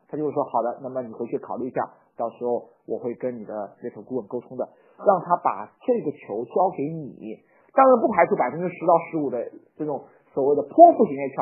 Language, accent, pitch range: Chinese, native, 140-230 Hz